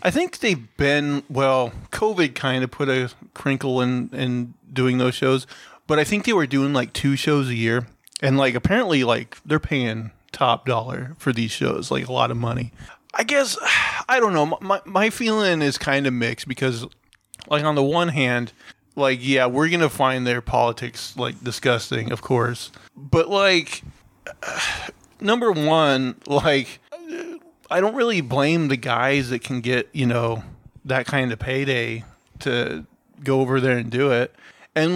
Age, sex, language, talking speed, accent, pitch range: 30-49, male, English, 175 wpm, American, 120-150 Hz